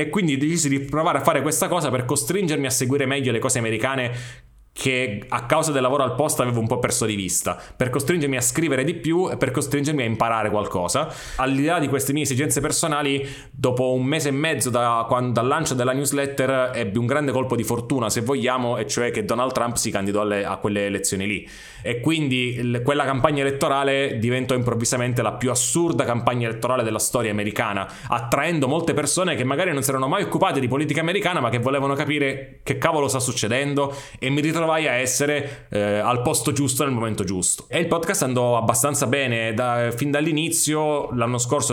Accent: native